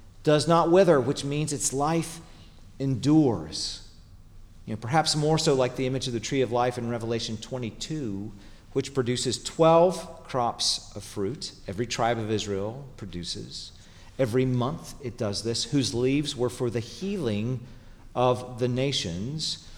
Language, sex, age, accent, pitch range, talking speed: English, male, 40-59, American, 100-140 Hz, 145 wpm